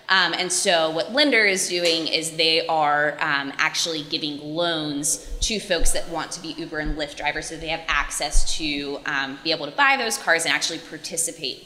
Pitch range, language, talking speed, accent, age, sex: 155-195 Hz, English, 200 wpm, American, 20-39, female